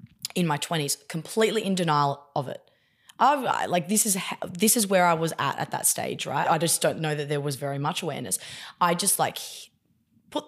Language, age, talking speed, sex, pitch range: English, 20-39, 205 wpm, female, 150-175 Hz